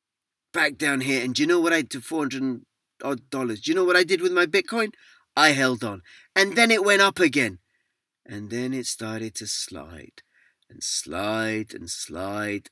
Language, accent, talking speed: English, British, 210 wpm